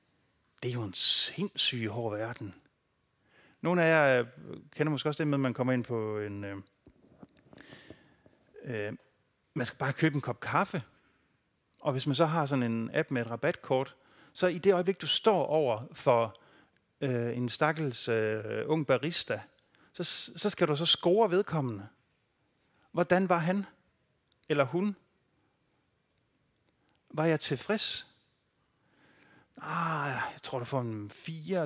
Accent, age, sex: native, 40-59, male